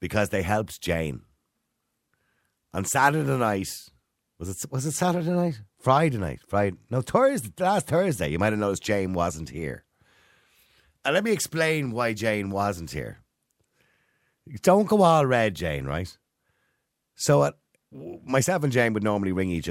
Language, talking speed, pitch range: English, 150 wpm, 75-115 Hz